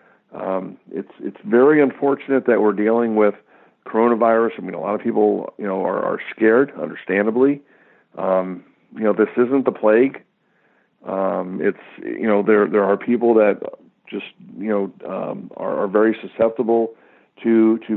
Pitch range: 105-115 Hz